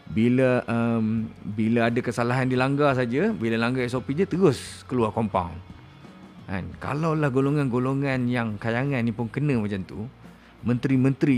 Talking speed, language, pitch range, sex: 130 wpm, Malay, 105-145 Hz, male